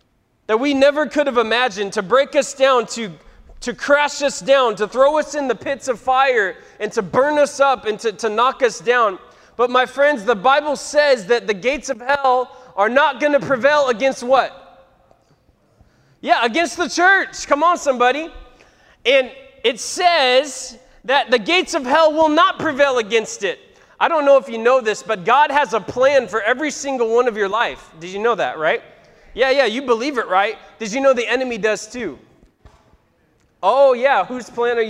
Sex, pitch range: male, 235-275 Hz